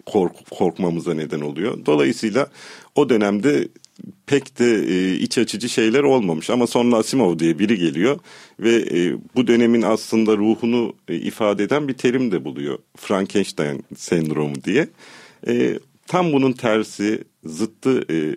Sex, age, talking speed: male, 50-69, 135 wpm